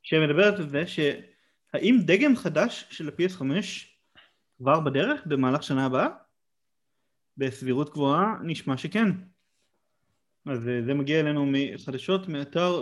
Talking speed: 110 wpm